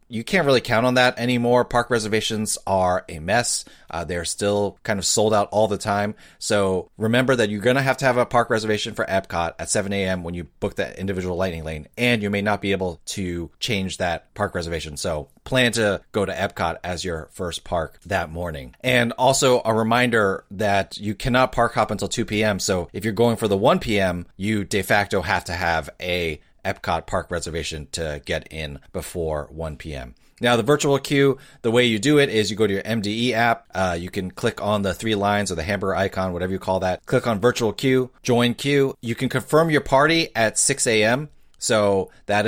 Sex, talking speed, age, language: male, 215 wpm, 30-49, English